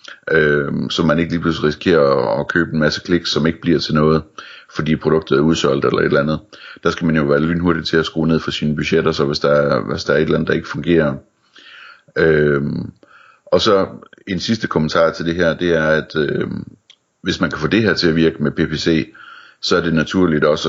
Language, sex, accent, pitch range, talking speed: Danish, male, native, 75-85 Hz, 220 wpm